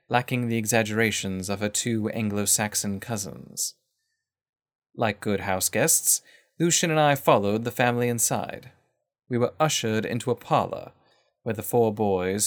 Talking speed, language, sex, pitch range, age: 135 wpm, English, male, 105-130 Hz, 30-49